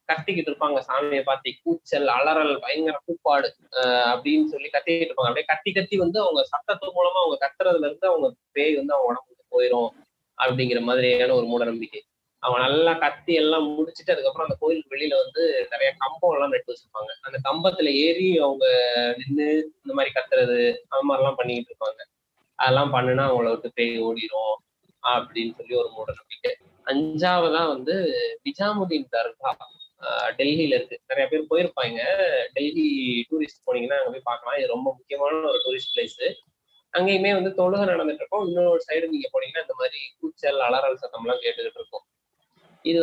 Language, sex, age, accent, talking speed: Tamil, male, 20-39, native, 150 wpm